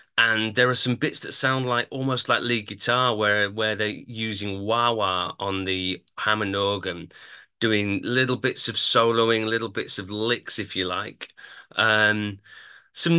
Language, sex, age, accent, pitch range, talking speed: English, male, 30-49, British, 115-160 Hz, 165 wpm